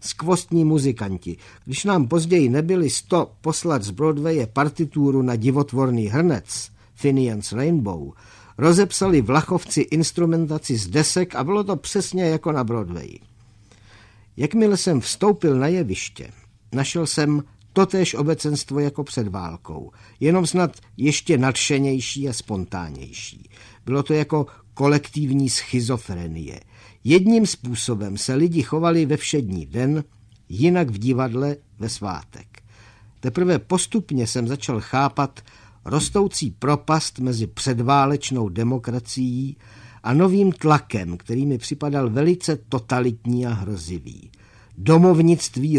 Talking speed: 110 wpm